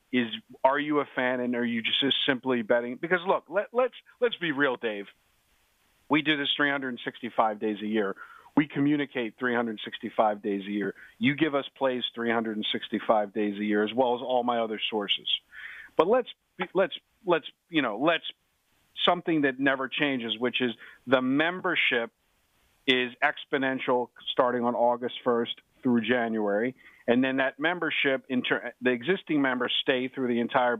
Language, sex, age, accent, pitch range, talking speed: English, male, 50-69, American, 120-145 Hz, 160 wpm